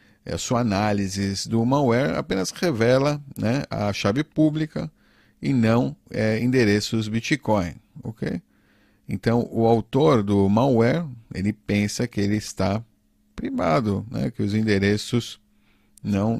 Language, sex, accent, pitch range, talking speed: Portuguese, male, Brazilian, 105-125 Hz, 110 wpm